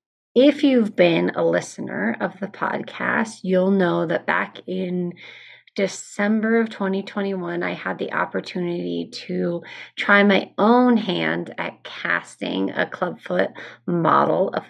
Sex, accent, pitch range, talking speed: female, American, 175-215 Hz, 125 wpm